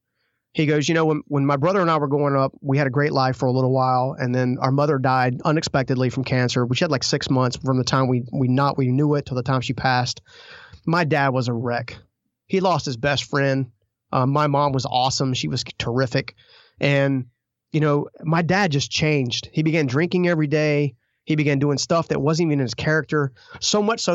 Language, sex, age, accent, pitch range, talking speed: English, male, 30-49, American, 130-150 Hz, 230 wpm